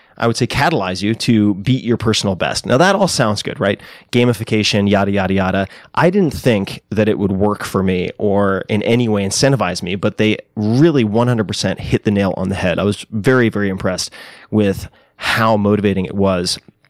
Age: 30-49